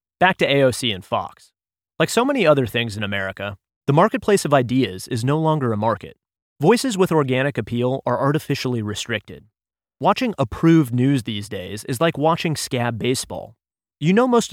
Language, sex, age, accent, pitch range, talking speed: English, male, 30-49, American, 115-155 Hz, 170 wpm